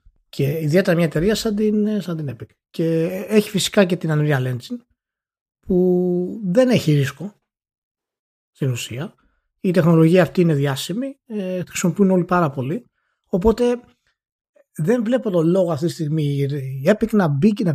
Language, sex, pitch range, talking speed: Greek, male, 145-195 Hz, 145 wpm